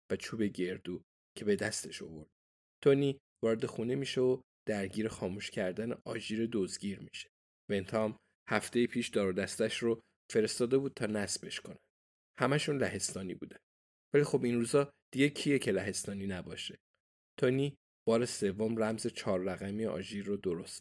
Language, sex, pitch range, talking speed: Persian, male, 100-130 Hz, 140 wpm